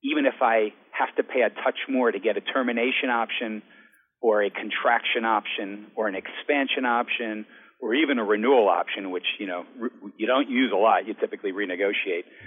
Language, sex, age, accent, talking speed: English, male, 50-69, American, 185 wpm